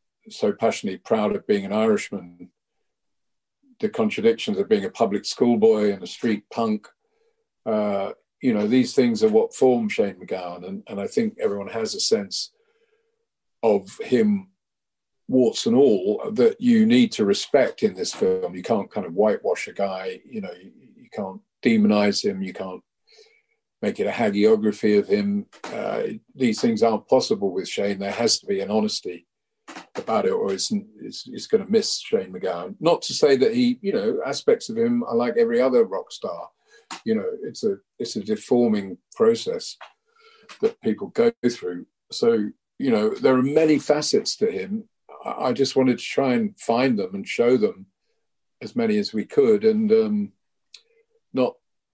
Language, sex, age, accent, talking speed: English, male, 50-69, British, 175 wpm